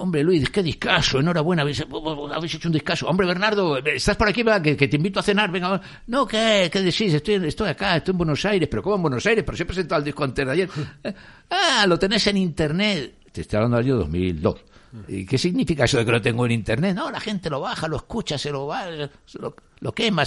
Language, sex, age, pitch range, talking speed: Spanish, male, 60-79, 105-170 Hz, 245 wpm